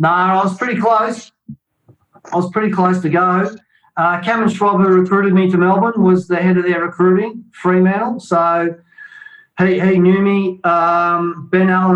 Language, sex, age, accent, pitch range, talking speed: English, male, 40-59, Australian, 145-175 Hz, 175 wpm